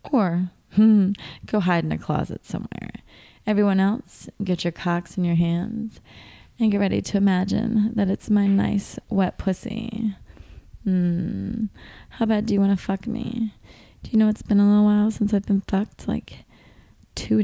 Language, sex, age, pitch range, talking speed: English, female, 20-39, 185-225 Hz, 170 wpm